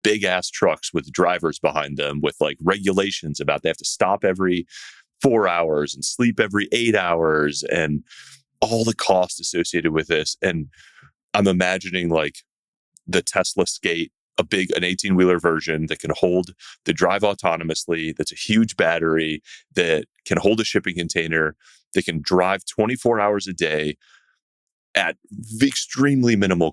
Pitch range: 80-105 Hz